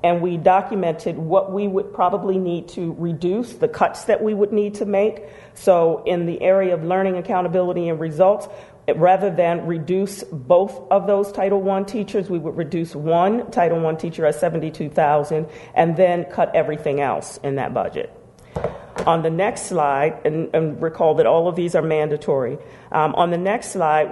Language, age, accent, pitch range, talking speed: English, 40-59, American, 150-185 Hz, 175 wpm